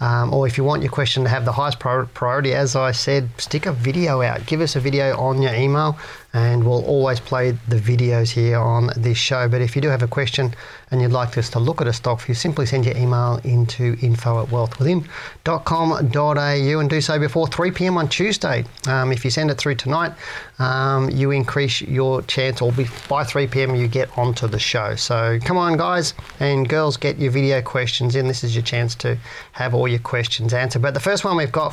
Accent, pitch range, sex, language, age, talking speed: Australian, 125-150 Hz, male, English, 40-59, 220 wpm